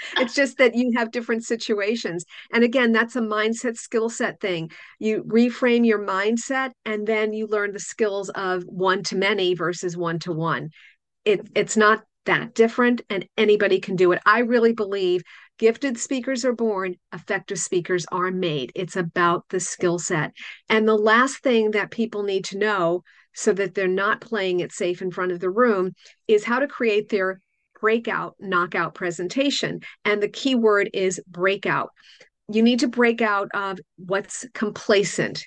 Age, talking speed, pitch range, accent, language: 50-69, 165 wpm, 190-245 Hz, American, English